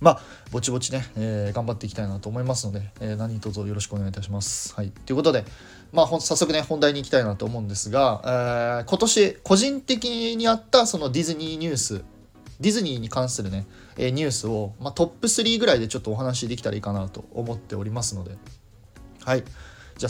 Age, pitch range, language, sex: 20-39, 110-145 Hz, Japanese, male